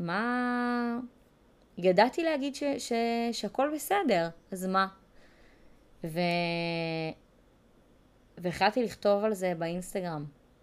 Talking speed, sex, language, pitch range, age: 75 wpm, female, Hebrew, 170-235 Hz, 20-39